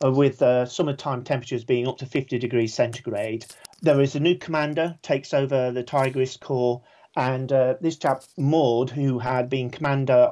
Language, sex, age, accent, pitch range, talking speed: English, male, 40-59, British, 125-150 Hz, 175 wpm